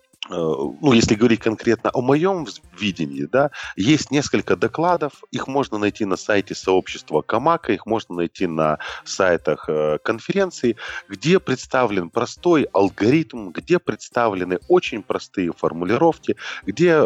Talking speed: 115 wpm